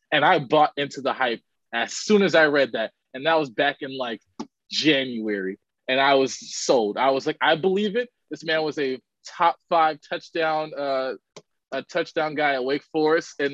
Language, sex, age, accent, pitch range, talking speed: English, male, 20-39, American, 135-165 Hz, 195 wpm